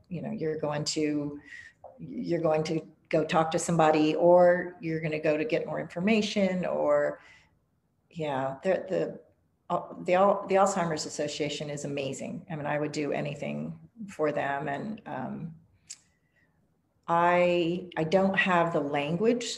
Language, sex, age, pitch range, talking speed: English, female, 40-59, 160-200 Hz, 145 wpm